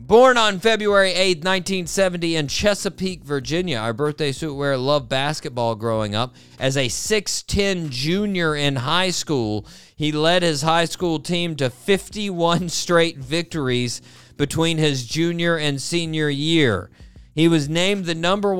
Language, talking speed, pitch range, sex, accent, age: English, 140 wpm, 140-180 Hz, male, American, 40-59